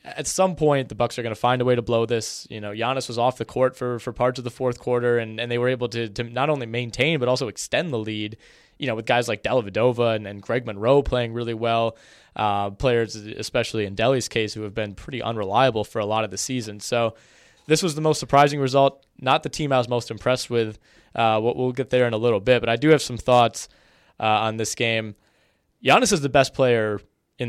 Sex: male